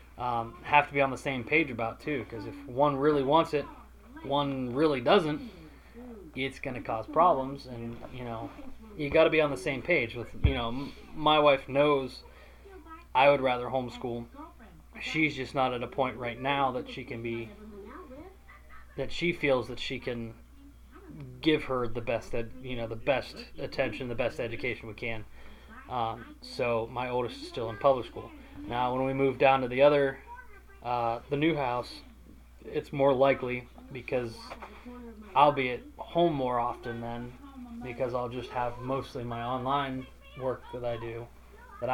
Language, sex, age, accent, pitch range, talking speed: English, male, 20-39, American, 115-140 Hz, 175 wpm